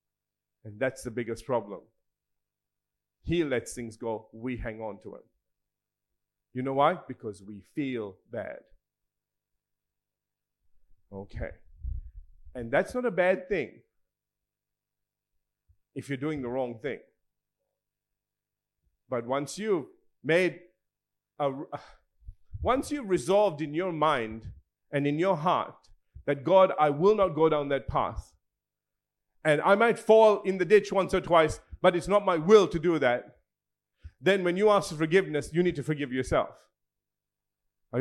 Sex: male